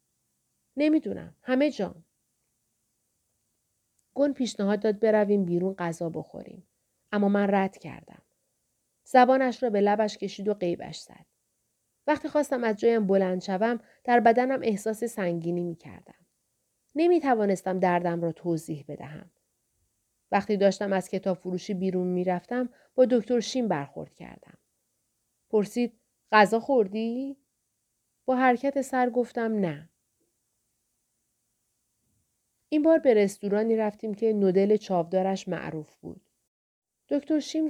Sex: female